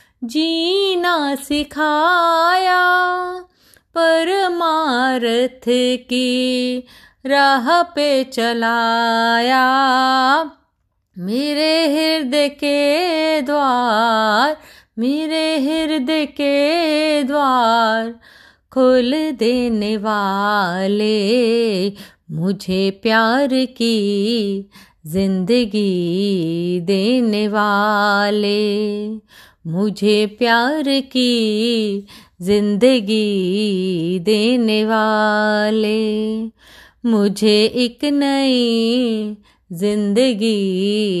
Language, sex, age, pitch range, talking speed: Hindi, female, 30-49, 210-275 Hz, 50 wpm